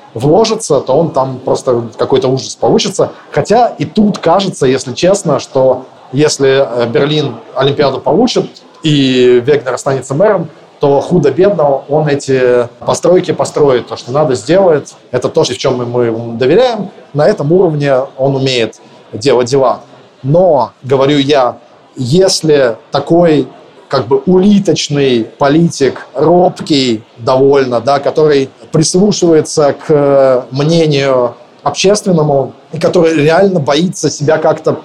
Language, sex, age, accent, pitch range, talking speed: Russian, male, 30-49, native, 130-160 Hz, 120 wpm